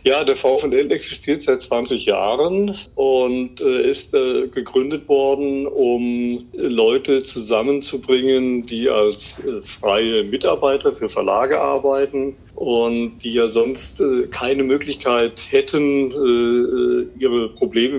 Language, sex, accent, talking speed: German, male, German, 105 wpm